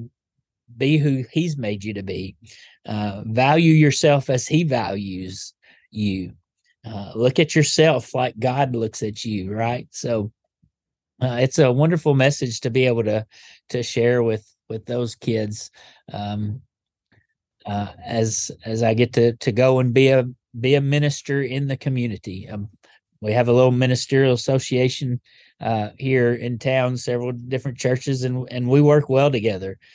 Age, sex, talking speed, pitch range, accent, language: 30-49, male, 155 wpm, 110-135 Hz, American, English